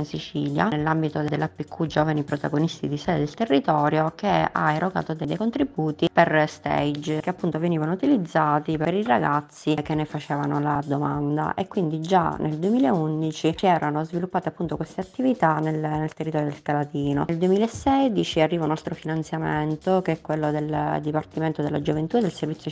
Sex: female